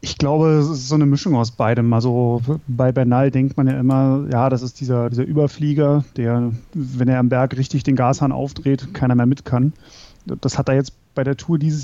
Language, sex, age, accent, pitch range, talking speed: German, male, 30-49, German, 125-145 Hz, 220 wpm